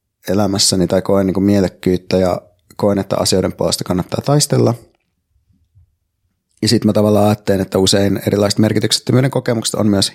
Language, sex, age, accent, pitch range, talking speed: Finnish, male, 30-49, native, 95-115 Hz, 150 wpm